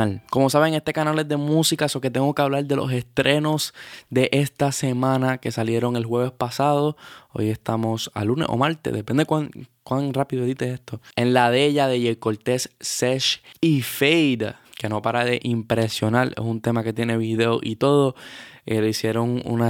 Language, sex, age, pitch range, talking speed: Spanish, male, 10-29, 110-135 Hz, 190 wpm